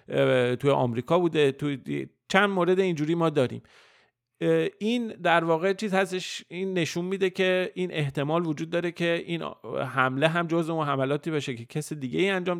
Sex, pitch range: male, 120-165 Hz